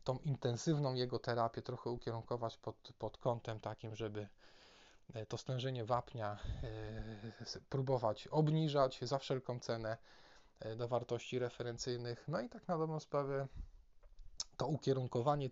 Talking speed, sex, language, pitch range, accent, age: 125 wpm, male, Polish, 115-135 Hz, native, 20-39